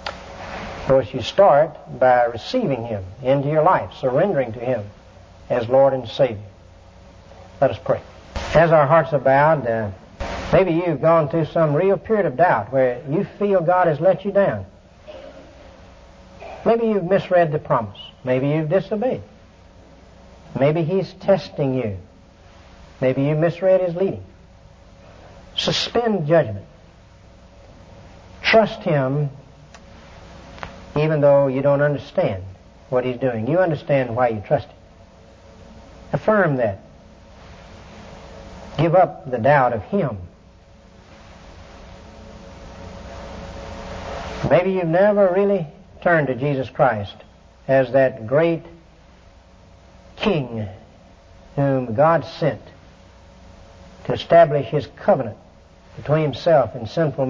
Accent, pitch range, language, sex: American, 95-155 Hz, English, male